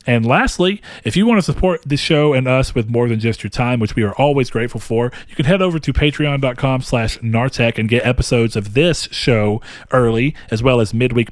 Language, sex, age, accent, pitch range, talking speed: English, male, 40-59, American, 115-155 Hz, 225 wpm